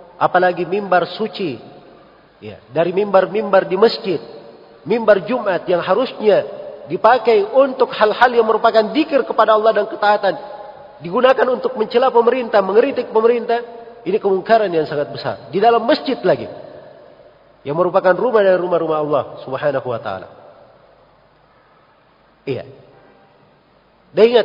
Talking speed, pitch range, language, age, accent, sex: 120 wpm, 180-255 Hz, Indonesian, 40-59, native, male